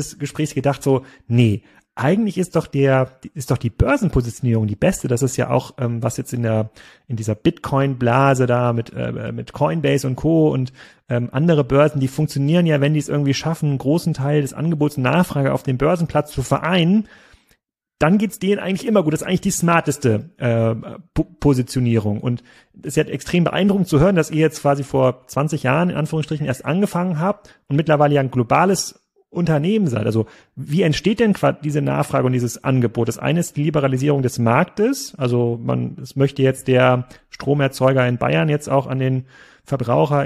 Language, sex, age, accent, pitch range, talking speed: German, male, 30-49, German, 130-165 Hz, 190 wpm